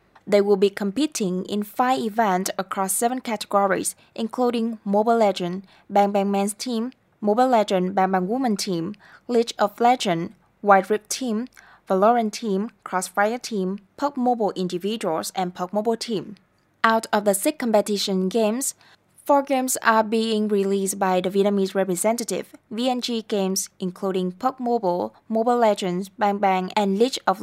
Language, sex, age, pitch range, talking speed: Vietnamese, female, 20-39, 190-230 Hz, 145 wpm